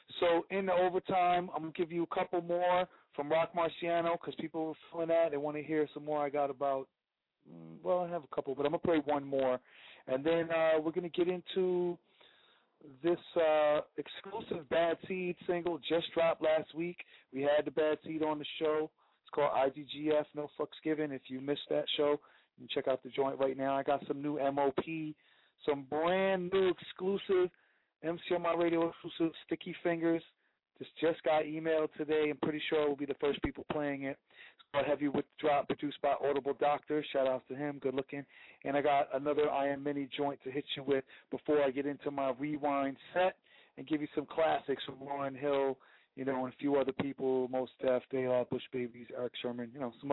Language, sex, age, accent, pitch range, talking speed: English, male, 40-59, American, 135-165 Hz, 210 wpm